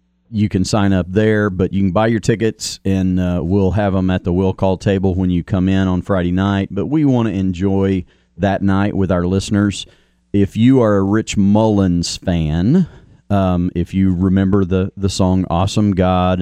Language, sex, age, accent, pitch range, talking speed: English, male, 40-59, American, 90-110 Hz, 195 wpm